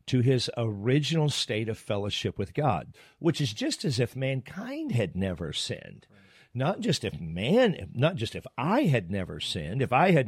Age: 50-69